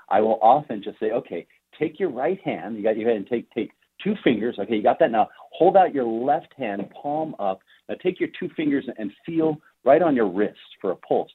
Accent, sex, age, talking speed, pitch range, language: American, male, 50-69, 235 wpm, 100-155 Hz, English